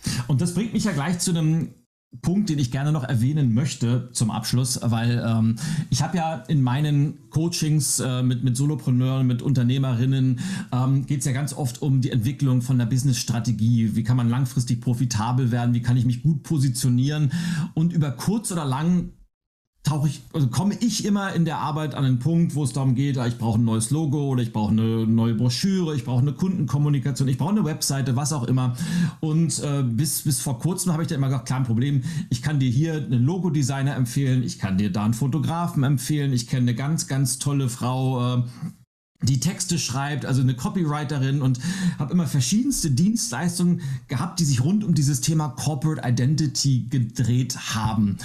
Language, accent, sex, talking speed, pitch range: German, German, male, 195 wpm, 125-160 Hz